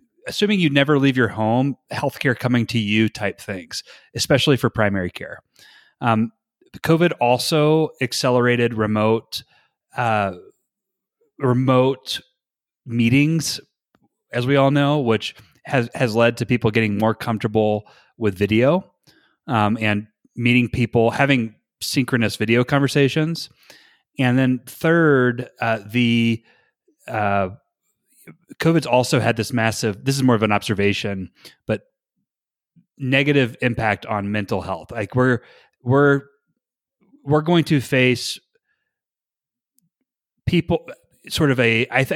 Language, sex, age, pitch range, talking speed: English, male, 30-49, 115-145 Hz, 120 wpm